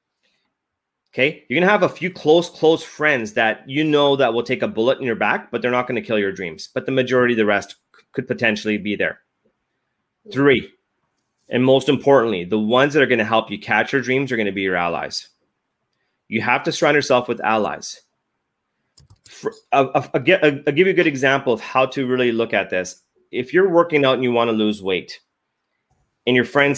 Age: 30-49